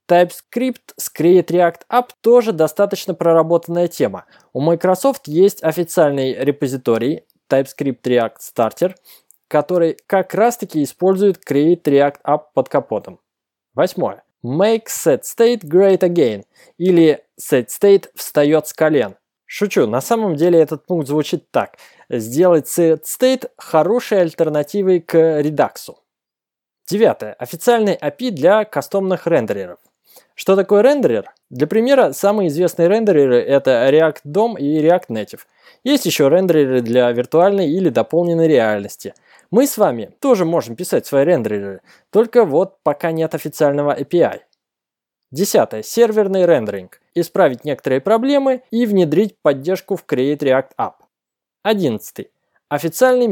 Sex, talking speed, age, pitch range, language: male, 120 wpm, 20-39, 145-200 Hz, Russian